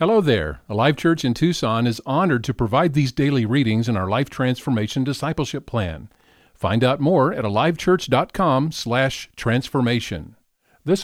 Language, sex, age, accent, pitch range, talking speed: English, male, 50-69, American, 115-155 Hz, 140 wpm